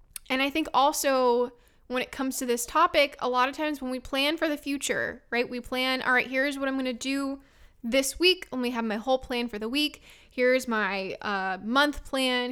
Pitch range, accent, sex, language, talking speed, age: 230-275 Hz, American, female, English, 225 wpm, 10-29